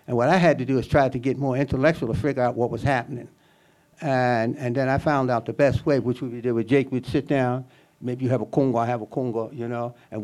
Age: 60-79